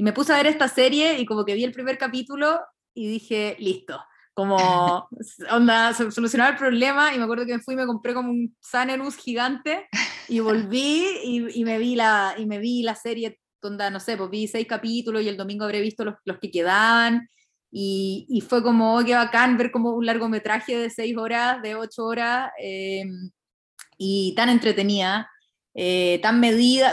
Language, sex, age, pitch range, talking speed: Spanish, female, 20-39, 195-240 Hz, 195 wpm